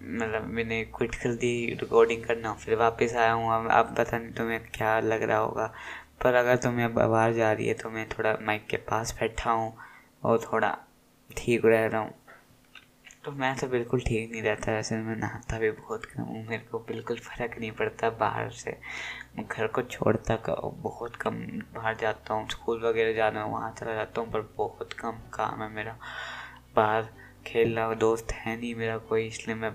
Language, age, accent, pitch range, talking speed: Hindi, 20-39, native, 110-115 Hz, 195 wpm